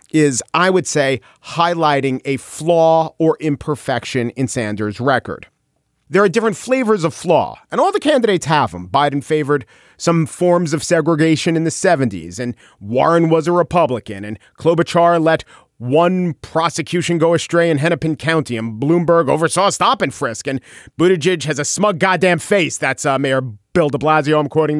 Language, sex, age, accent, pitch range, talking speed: English, male, 40-59, American, 125-165 Hz, 170 wpm